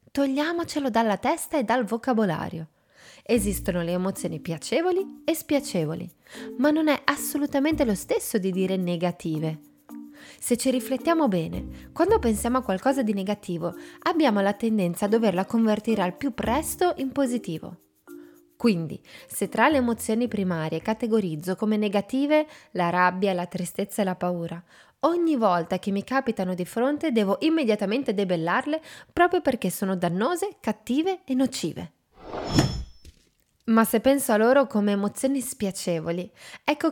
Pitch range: 190-275 Hz